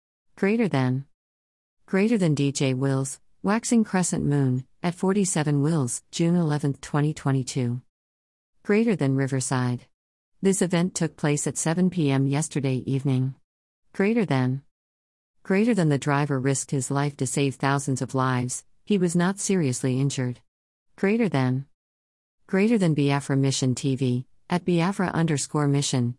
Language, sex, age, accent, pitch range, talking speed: English, female, 50-69, American, 130-165 Hz, 130 wpm